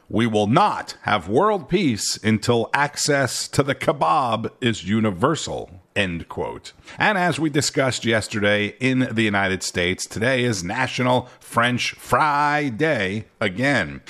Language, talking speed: English, 130 wpm